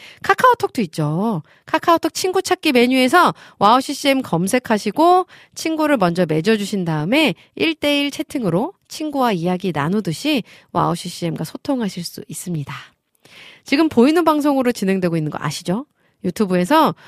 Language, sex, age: Korean, female, 40-59